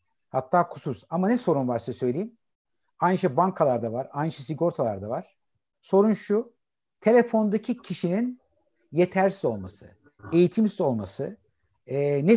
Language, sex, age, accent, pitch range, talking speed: Turkish, male, 60-79, native, 140-195 Hz, 120 wpm